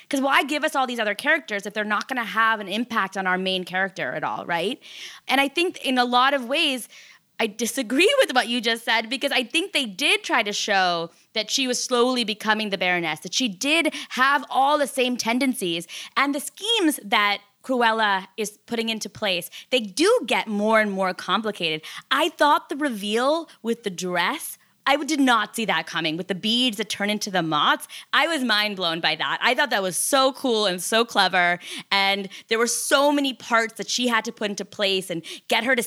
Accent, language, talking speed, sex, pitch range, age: American, English, 215 wpm, female, 205-275 Hz, 20-39